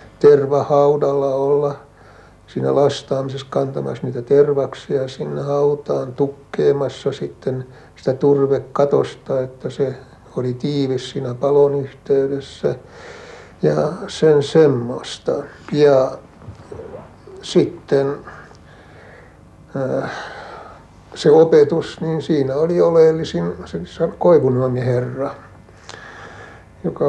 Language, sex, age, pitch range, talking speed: Finnish, male, 60-79, 130-155 Hz, 70 wpm